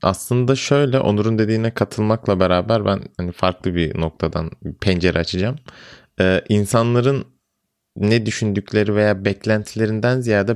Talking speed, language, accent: 100 wpm, Turkish, native